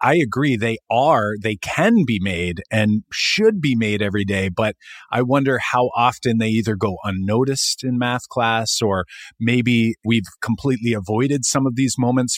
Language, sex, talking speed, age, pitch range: English, male, 170 wpm, 30-49, 105-130 Hz